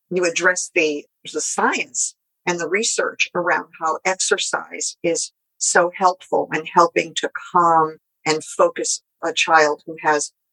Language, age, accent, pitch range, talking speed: English, 50-69, American, 155-180 Hz, 135 wpm